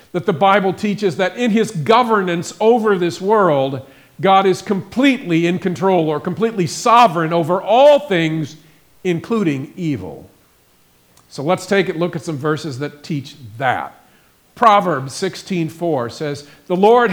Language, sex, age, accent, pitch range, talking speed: English, male, 50-69, American, 150-210 Hz, 140 wpm